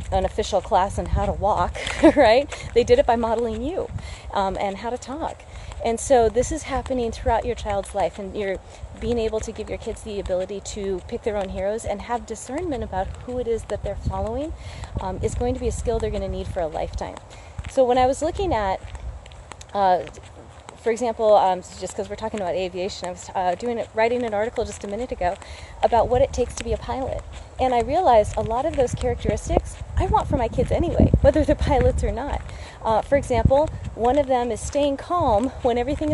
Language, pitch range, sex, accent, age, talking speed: English, 205-270 Hz, female, American, 30-49, 220 wpm